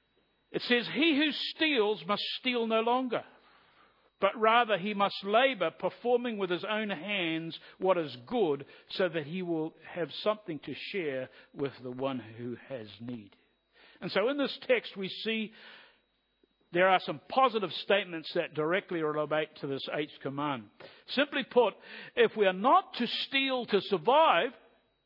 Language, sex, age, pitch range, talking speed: English, male, 60-79, 150-230 Hz, 155 wpm